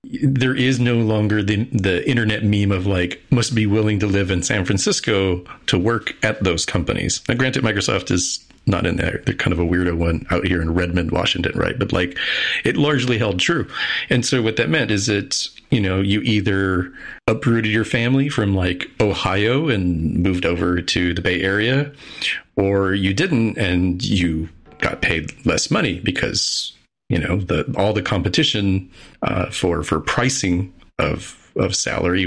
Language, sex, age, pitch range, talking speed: English, male, 40-59, 90-125 Hz, 175 wpm